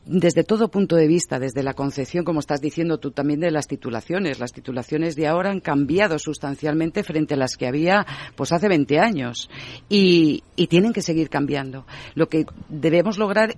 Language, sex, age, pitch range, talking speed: Spanish, female, 40-59, 135-165 Hz, 185 wpm